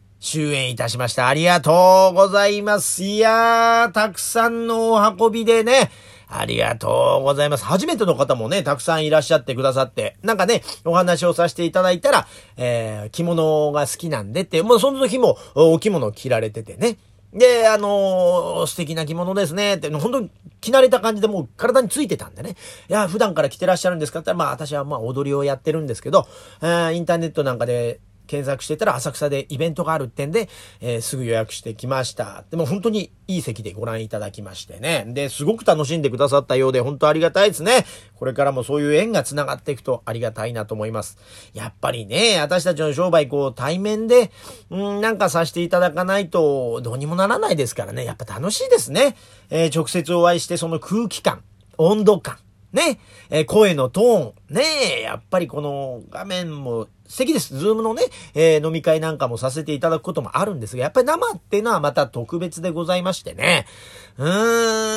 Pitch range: 130-205 Hz